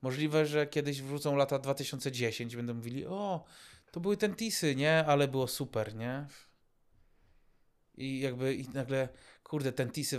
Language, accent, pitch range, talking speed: Polish, native, 115-145 Hz, 145 wpm